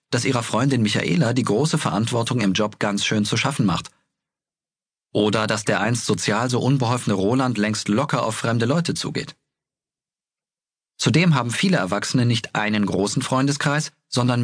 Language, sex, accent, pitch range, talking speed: German, male, German, 110-155 Hz, 155 wpm